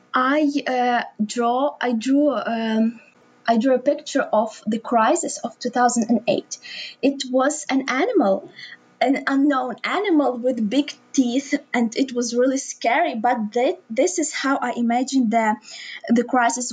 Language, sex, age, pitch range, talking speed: English, female, 20-39, 230-270 Hz, 145 wpm